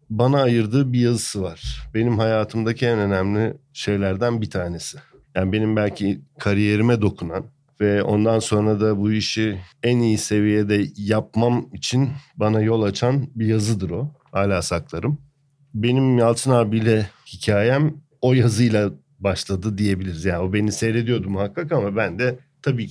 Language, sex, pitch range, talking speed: Turkish, male, 95-125 Hz, 140 wpm